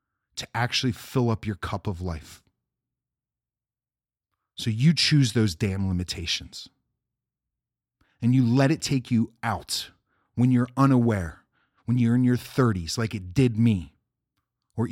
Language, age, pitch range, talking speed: English, 40-59, 110-135 Hz, 135 wpm